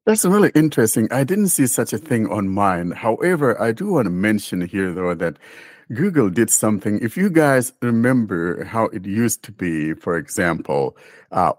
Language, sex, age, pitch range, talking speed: English, male, 60-79, 95-115 Hz, 180 wpm